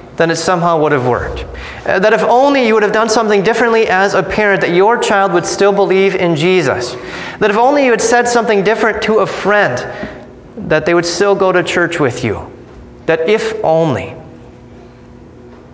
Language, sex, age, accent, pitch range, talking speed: English, male, 30-49, American, 125-200 Hz, 185 wpm